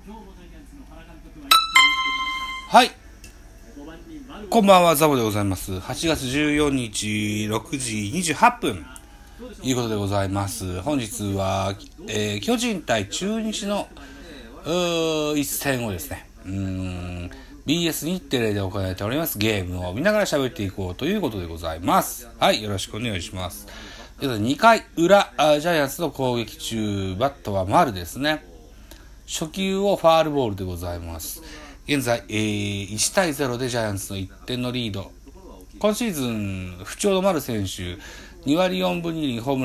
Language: Japanese